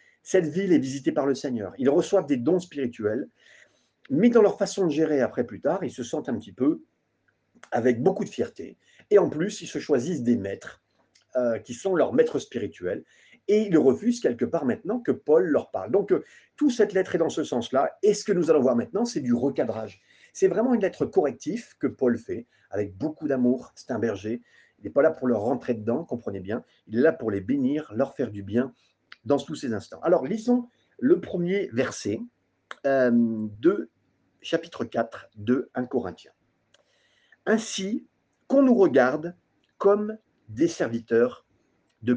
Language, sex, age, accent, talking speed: French, male, 40-59, French, 190 wpm